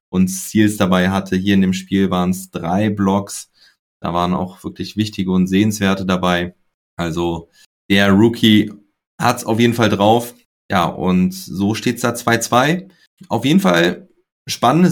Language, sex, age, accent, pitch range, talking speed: German, male, 30-49, German, 95-115 Hz, 160 wpm